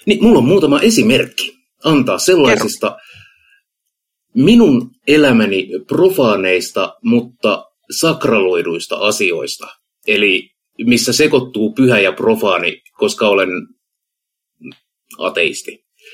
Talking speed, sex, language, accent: 80 wpm, male, Finnish, native